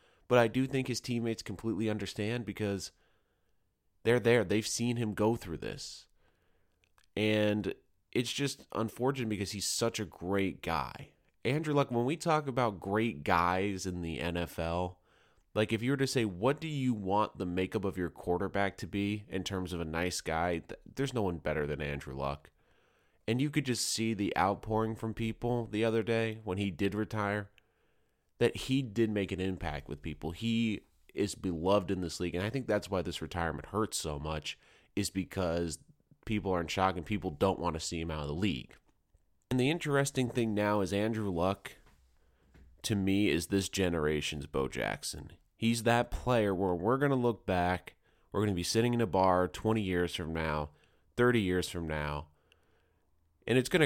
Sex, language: male, English